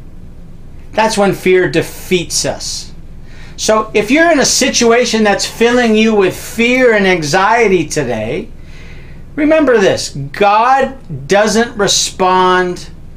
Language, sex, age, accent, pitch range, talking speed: English, male, 50-69, American, 165-230 Hz, 110 wpm